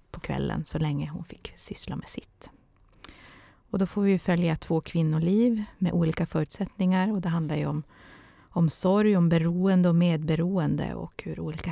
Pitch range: 155-180 Hz